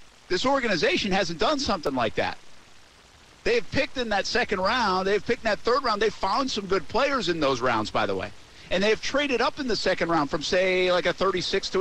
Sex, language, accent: male, English, American